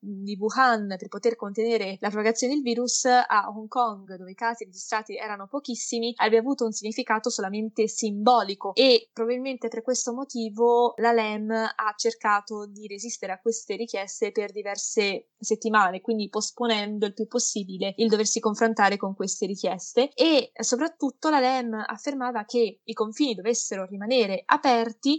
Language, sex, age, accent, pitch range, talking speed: Italian, female, 20-39, native, 210-245 Hz, 150 wpm